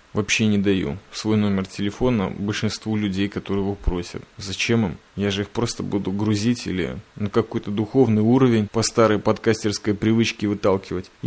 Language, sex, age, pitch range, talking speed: Russian, male, 20-39, 100-120 Hz, 155 wpm